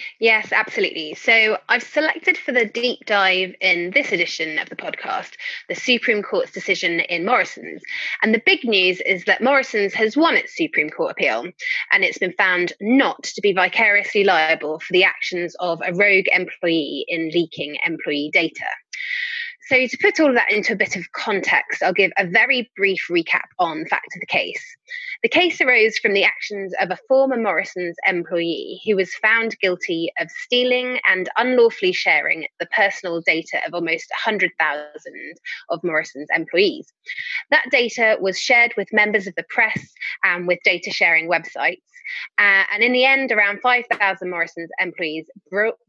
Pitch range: 185-275 Hz